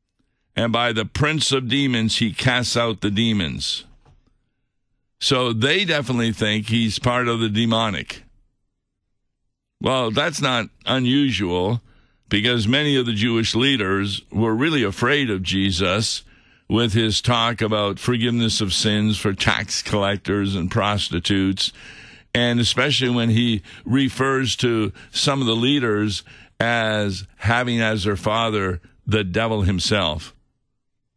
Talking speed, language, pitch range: 125 wpm, English, 105-125 Hz